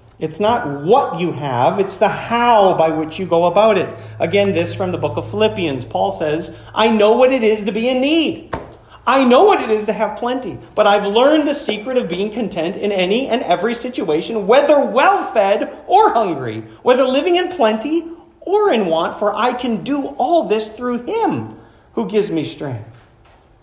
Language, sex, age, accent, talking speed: English, male, 40-59, American, 195 wpm